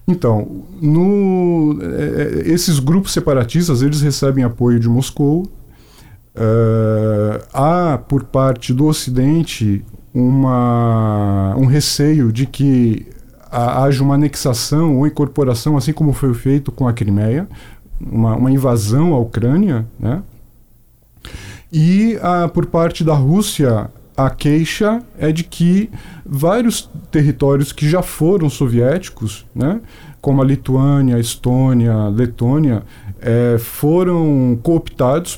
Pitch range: 120-155 Hz